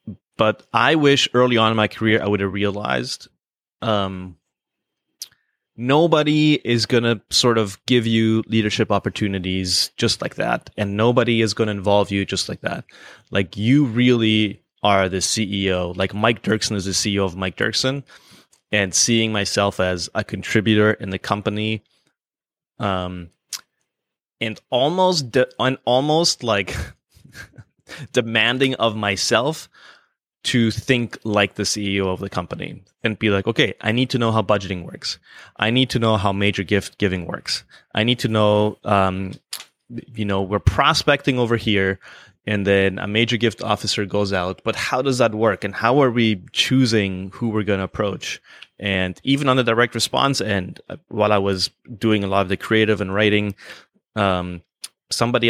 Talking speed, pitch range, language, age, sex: 165 wpm, 100-120 Hz, English, 20-39, male